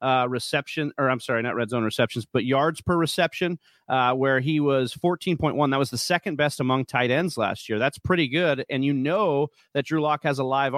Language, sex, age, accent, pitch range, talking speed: English, male, 30-49, American, 130-160 Hz, 225 wpm